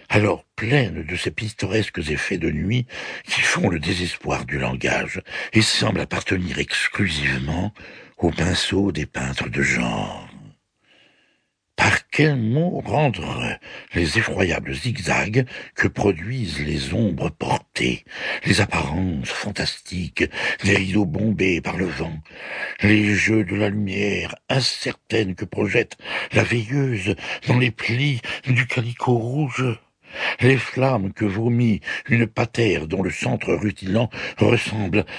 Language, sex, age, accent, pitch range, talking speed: French, male, 60-79, French, 95-120 Hz, 125 wpm